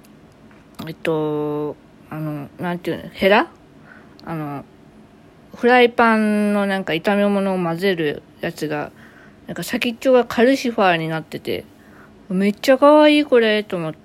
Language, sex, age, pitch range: Japanese, female, 20-39, 165-240 Hz